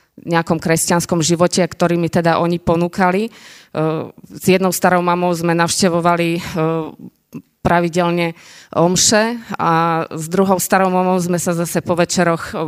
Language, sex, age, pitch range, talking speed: Slovak, female, 20-39, 165-185 Hz, 125 wpm